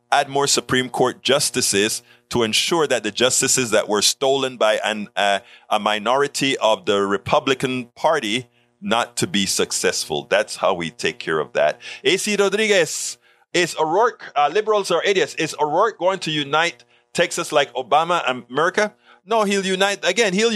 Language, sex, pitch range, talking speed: English, male, 120-185 Hz, 165 wpm